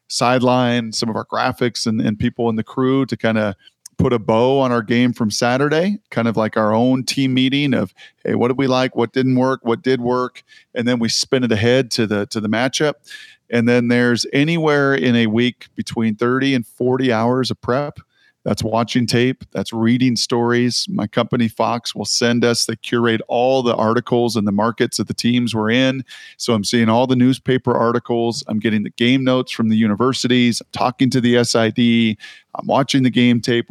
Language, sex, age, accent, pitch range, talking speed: English, male, 40-59, American, 115-130 Hz, 205 wpm